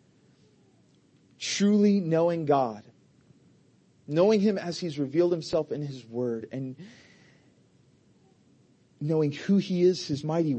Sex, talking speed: male, 110 wpm